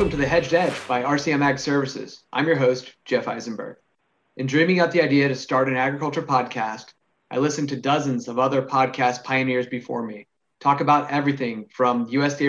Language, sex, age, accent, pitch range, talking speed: English, male, 30-49, American, 125-145 Hz, 185 wpm